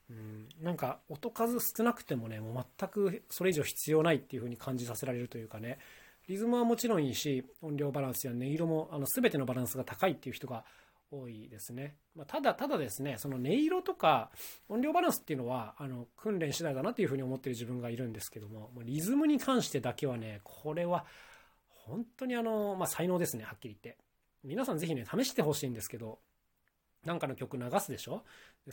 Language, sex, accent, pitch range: Japanese, male, native, 125-195 Hz